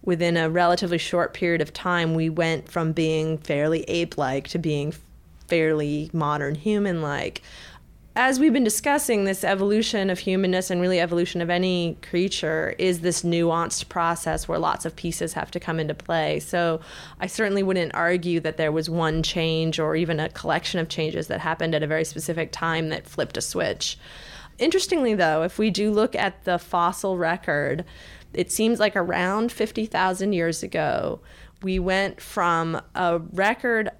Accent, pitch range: American, 165-195 Hz